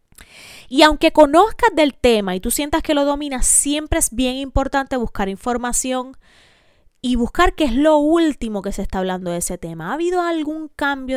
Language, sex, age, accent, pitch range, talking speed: Spanish, female, 20-39, American, 200-295 Hz, 185 wpm